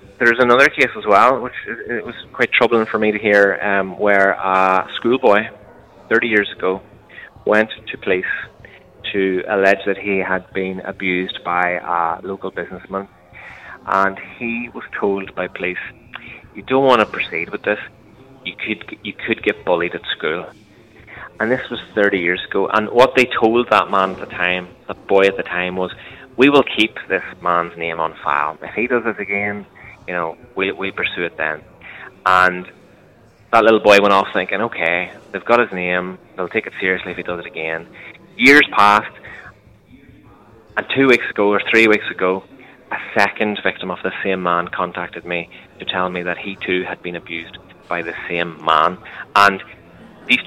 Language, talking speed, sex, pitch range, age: English, 180 wpm, male, 90-110 Hz, 20-39